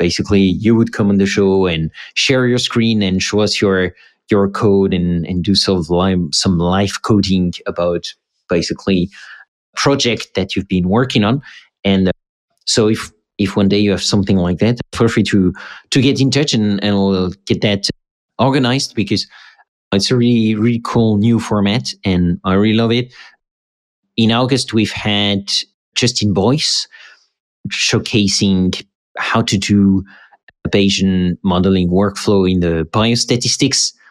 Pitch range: 95-115 Hz